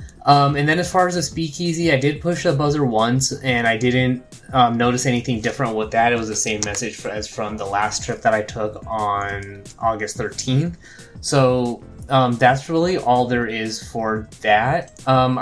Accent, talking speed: American, 195 wpm